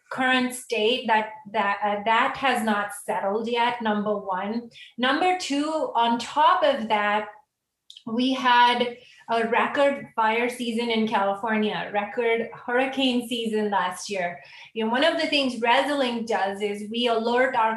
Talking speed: 145 wpm